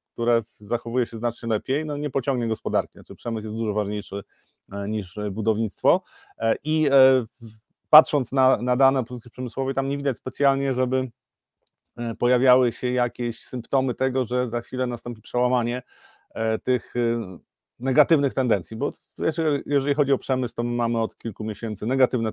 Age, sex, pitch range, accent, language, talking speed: 40-59, male, 110-130 Hz, native, Polish, 140 wpm